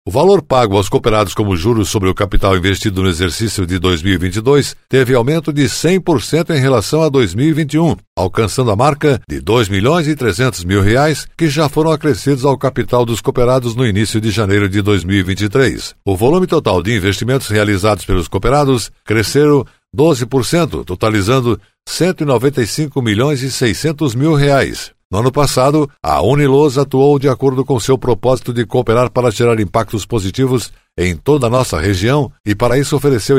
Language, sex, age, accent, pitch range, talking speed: Portuguese, male, 60-79, Brazilian, 105-140 Hz, 150 wpm